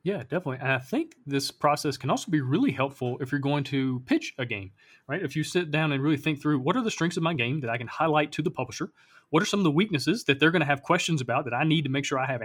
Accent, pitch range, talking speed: American, 130-160 Hz, 305 wpm